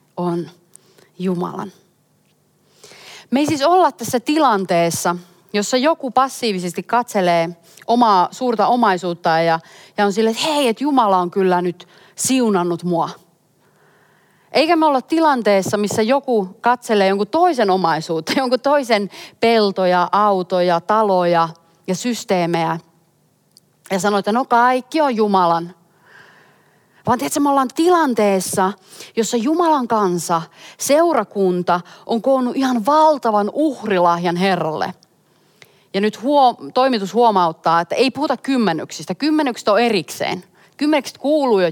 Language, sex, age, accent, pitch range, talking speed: Finnish, female, 30-49, native, 175-255 Hz, 120 wpm